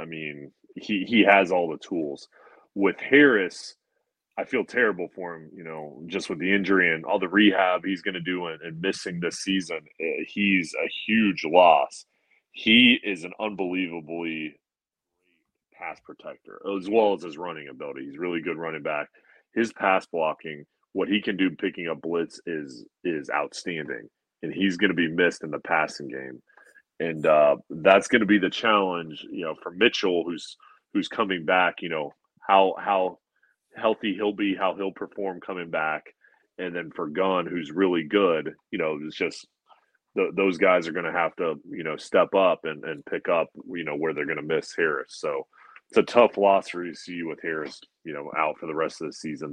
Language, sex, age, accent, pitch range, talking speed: English, male, 30-49, American, 80-100 Hz, 195 wpm